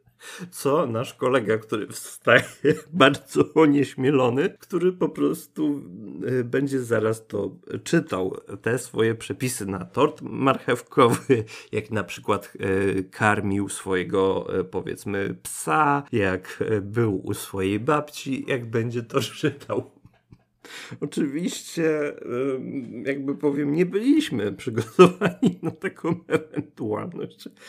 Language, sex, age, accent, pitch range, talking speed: Polish, male, 40-59, native, 100-130 Hz, 100 wpm